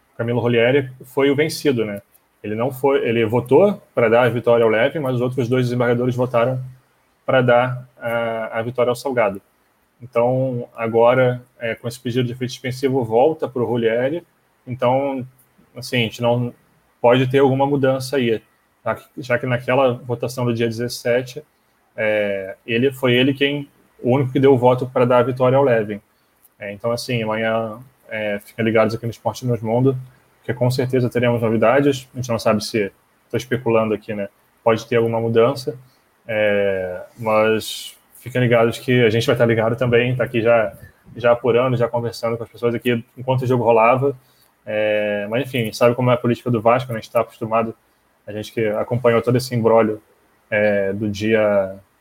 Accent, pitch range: Brazilian, 115-130 Hz